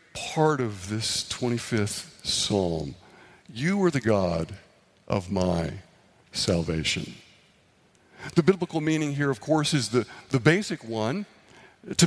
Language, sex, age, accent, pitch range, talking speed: English, male, 50-69, American, 120-175 Hz, 120 wpm